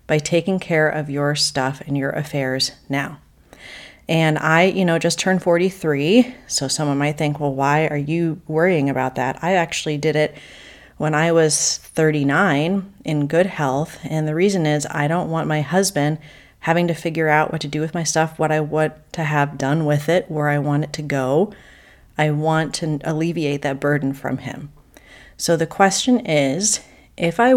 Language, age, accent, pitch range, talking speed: English, 30-49, American, 145-175 Hz, 185 wpm